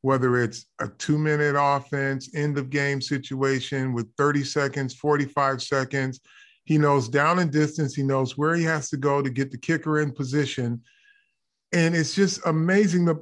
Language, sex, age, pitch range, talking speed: English, male, 40-59, 140-180 Hz, 160 wpm